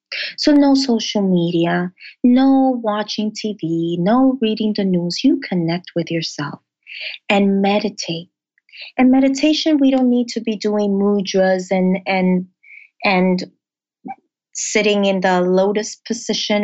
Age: 30-49